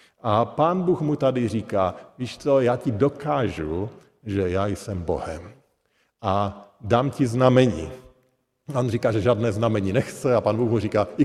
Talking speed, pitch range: 165 wpm, 100-120 Hz